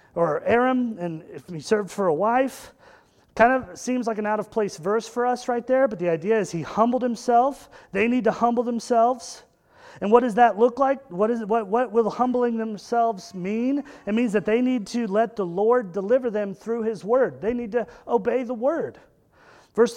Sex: male